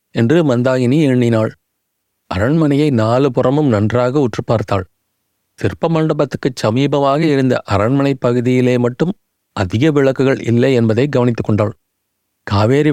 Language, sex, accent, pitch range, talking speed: Tamil, male, native, 115-145 Hz, 100 wpm